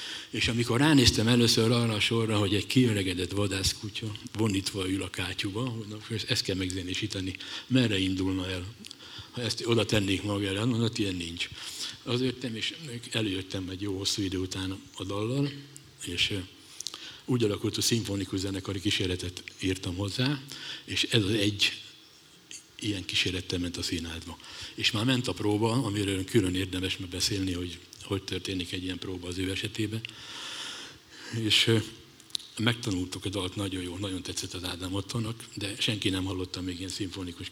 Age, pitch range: 60-79, 95-115 Hz